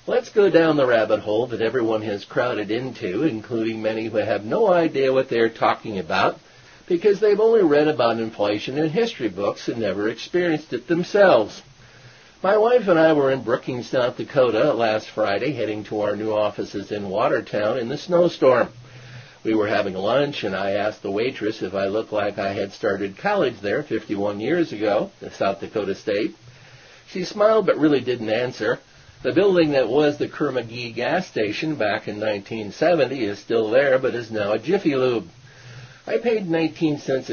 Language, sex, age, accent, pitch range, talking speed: English, male, 50-69, American, 115-165 Hz, 175 wpm